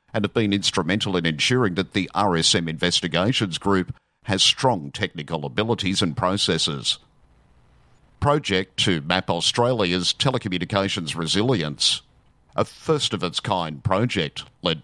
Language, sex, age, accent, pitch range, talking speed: English, male, 50-69, Australian, 85-105 Hz, 110 wpm